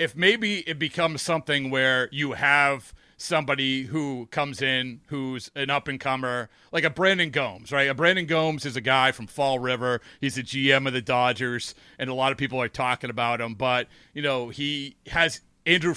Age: 30-49